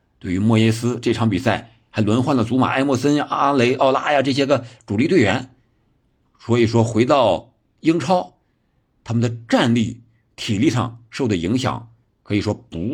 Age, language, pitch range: 50-69, Chinese, 105-125 Hz